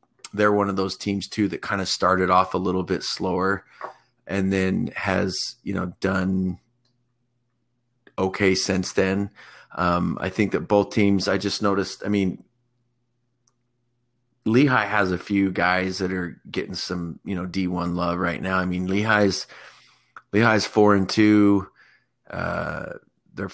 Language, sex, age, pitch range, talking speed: English, male, 30-49, 90-100 Hz, 150 wpm